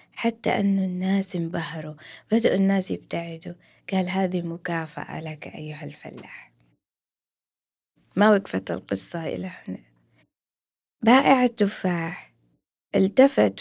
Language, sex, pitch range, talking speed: Arabic, female, 165-200 Hz, 95 wpm